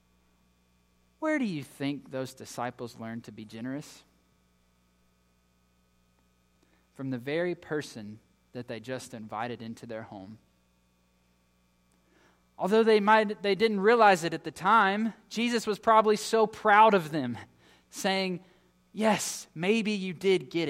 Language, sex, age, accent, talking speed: English, male, 20-39, American, 130 wpm